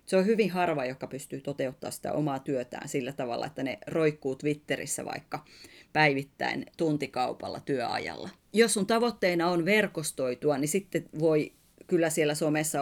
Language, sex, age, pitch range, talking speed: Finnish, female, 30-49, 145-180 Hz, 145 wpm